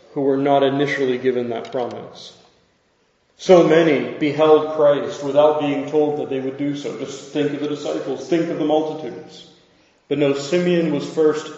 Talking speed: 170 wpm